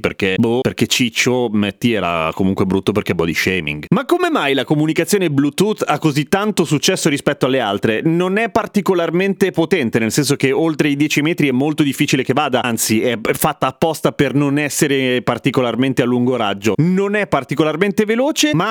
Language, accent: Italian, native